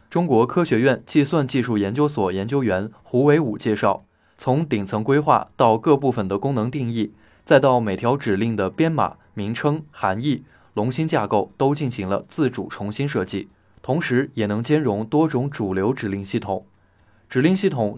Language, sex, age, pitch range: Chinese, male, 20-39, 105-145 Hz